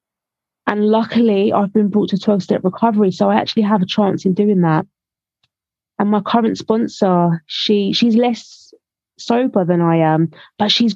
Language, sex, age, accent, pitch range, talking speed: English, female, 20-39, British, 185-220 Hz, 170 wpm